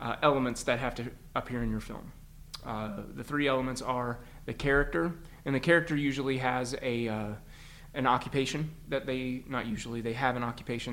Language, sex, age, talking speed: English, male, 30-49, 180 wpm